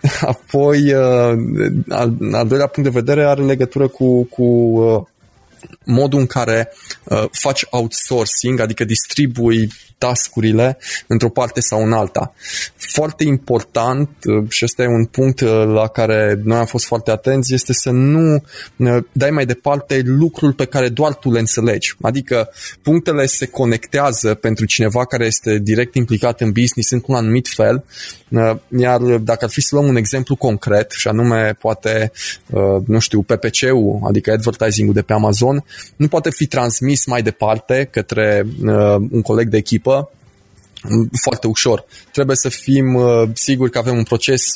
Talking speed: 145 wpm